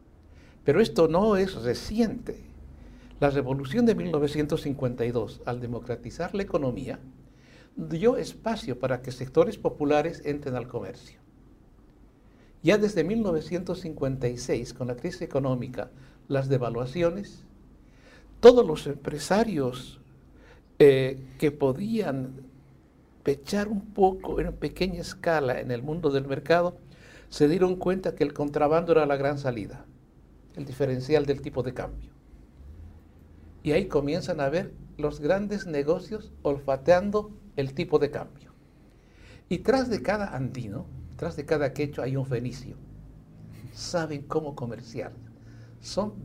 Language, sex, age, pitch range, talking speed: Spanish, male, 60-79, 125-170 Hz, 120 wpm